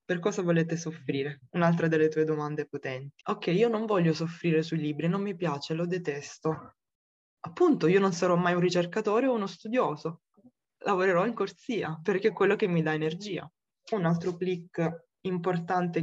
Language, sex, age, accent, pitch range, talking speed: Italian, female, 20-39, native, 160-200 Hz, 170 wpm